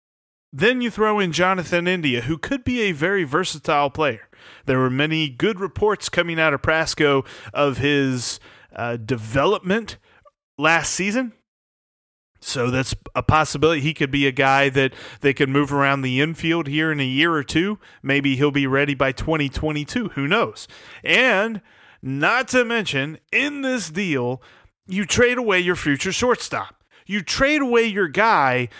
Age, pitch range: 30-49, 140-200 Hz